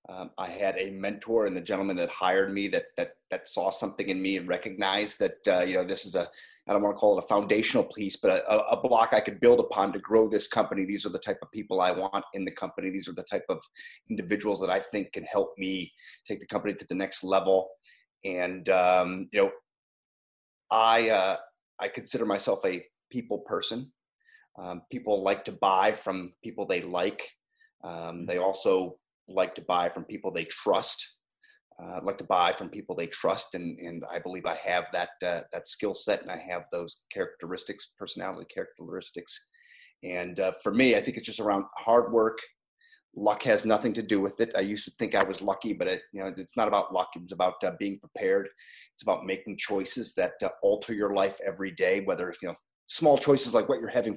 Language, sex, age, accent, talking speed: English, male, 30-49, American, 215 wpm